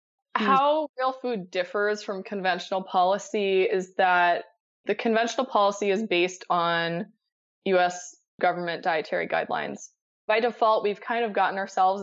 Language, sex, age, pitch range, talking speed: English, female, 20-39, 180-215 Hz, 130 wpm